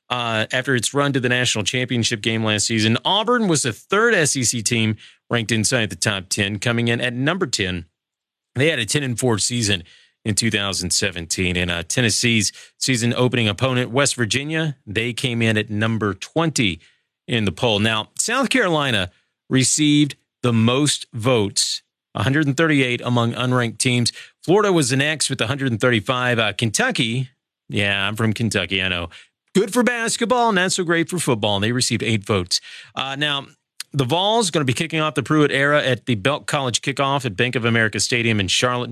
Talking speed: 175 wpm